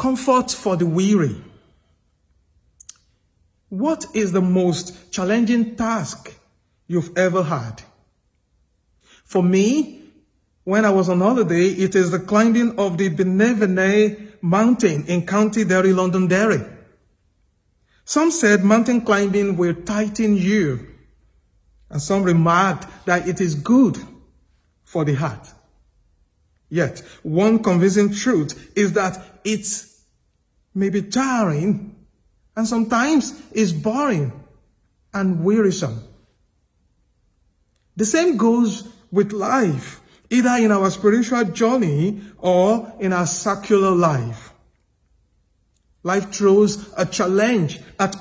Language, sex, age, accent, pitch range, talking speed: English, male, 50-69, Nigerian, 160-215 Hz, 105 wpm